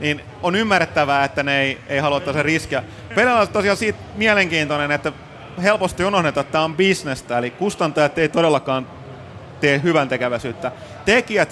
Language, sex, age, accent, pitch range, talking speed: Finnish, male, 30-49, native, 140-175 Hz, 150 wpm